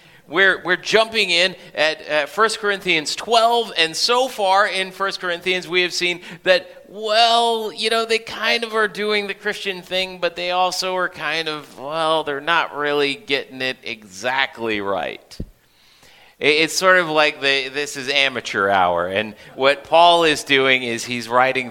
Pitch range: 145-210 Hz